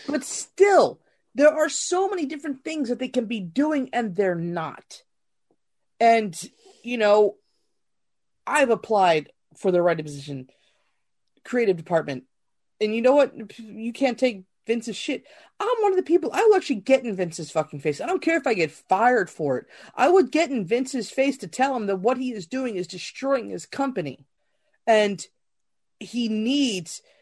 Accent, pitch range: American, 195-280 Hz